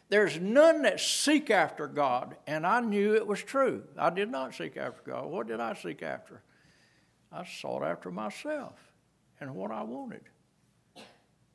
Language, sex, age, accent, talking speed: English, male, 60-79, American, 160 wpm